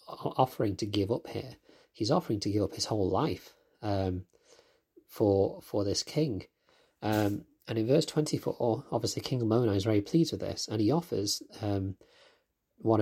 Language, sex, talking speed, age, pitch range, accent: English, male, 165 wpm, 30-49, 100-125 Hz, British